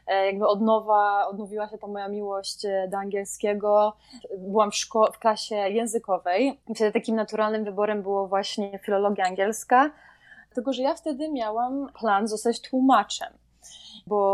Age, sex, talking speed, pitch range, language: 20-39, female, 140 wpm, 200-230 Hz, Polish